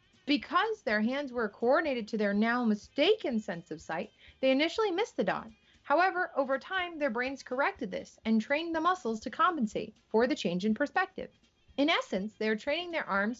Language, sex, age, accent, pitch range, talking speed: English, female, 30-49, American, 215-325 Hz, 190 wpm